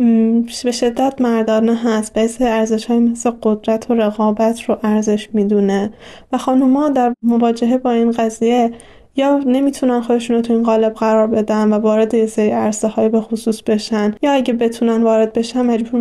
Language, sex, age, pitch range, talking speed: Persian, female, 10-29, 210-235 Hz, 170 wpm